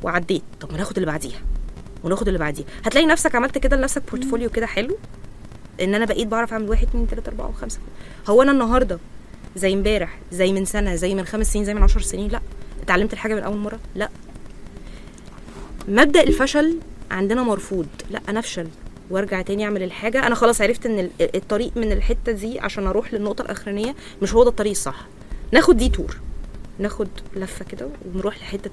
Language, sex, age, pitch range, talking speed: Arabic, female, 20-39, 190-235 Hz, 175 wpm